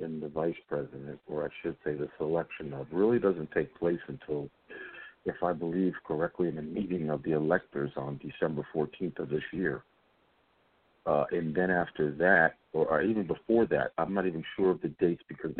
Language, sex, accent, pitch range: English, male, American, 75-90 Hz